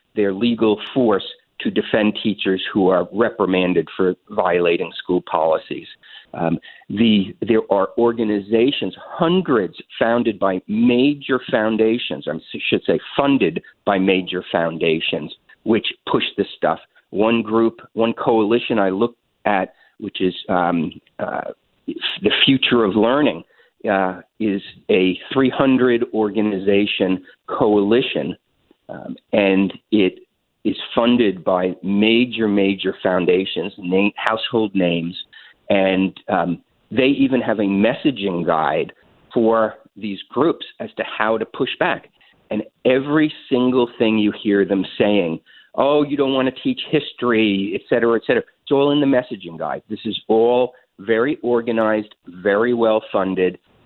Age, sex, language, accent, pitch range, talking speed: 50-69, male, English, American, 95-120 Hz, 125 wpm